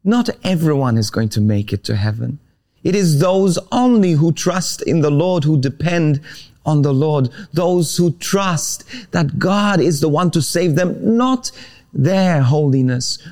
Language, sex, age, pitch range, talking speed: English, male, 30-49, 140-200 Hz, 165 wpm